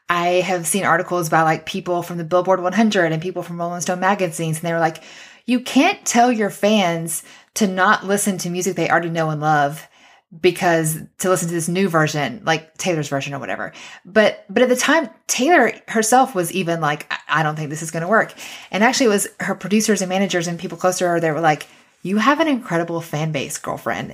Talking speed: 225 wpm